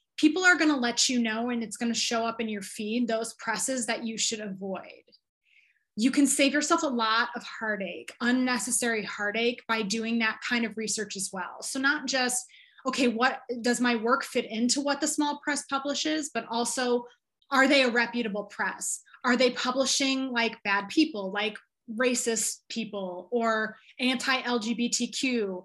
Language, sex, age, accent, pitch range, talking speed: English, female, 20-39, American, 225-265 Hz, 170 wpm